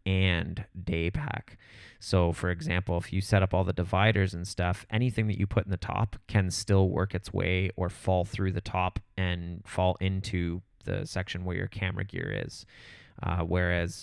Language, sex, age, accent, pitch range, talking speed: English, male, 20-39, American, 90-100 Hz, 185 wpm